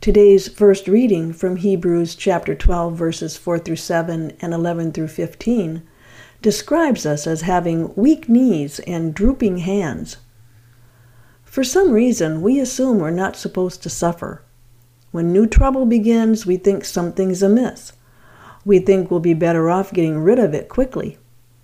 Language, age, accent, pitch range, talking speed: English, 50-69, American, 160-210 Hz, 140 wpm